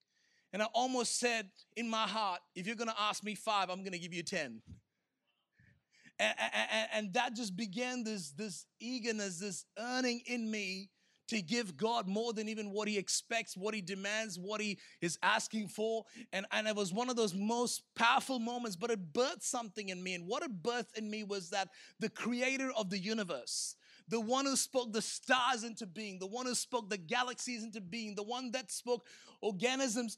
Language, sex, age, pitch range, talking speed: English, male, 30-49, 210-250 Hz, 200 wpm